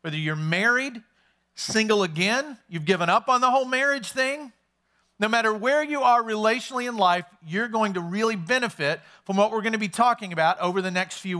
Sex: male